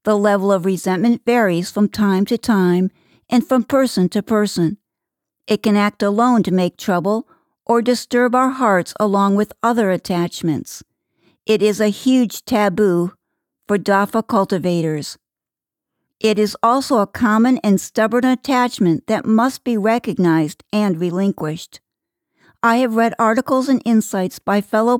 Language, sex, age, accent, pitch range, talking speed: English, female, 60-79, American, 185-235 Hz, 140 wpm